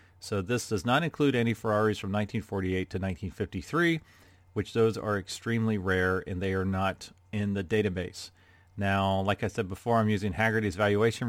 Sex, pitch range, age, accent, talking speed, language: male, 100-125 Hz, 40-59, American, 170 wpm, English